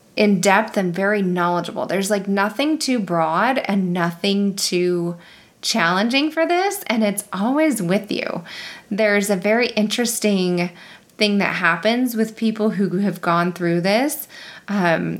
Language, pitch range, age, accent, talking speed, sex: English, 175-220 Hz, 20-39, American, 140 wpm, female